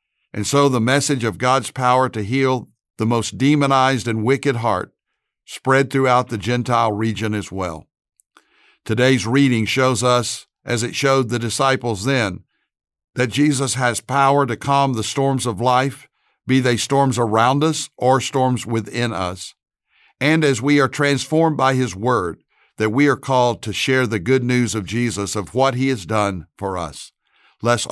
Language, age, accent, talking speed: English, 60-79, American, 170 wpm